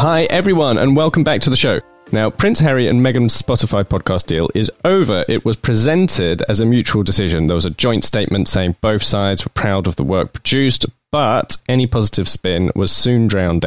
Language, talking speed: English, 200 wpm